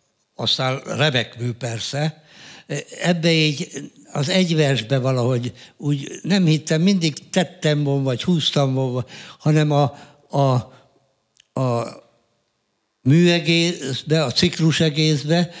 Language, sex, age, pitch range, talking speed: Hungarian, male, 60-79, 130-160 Hz, 90 wpm